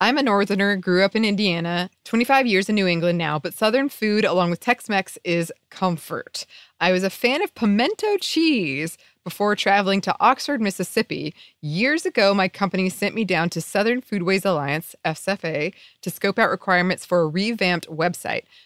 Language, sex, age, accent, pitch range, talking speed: English, female, 20-39, American, 175-235 Hz, 165 wpm